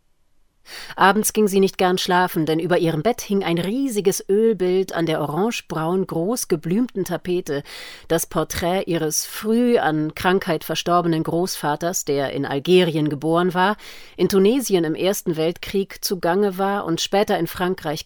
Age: 40-59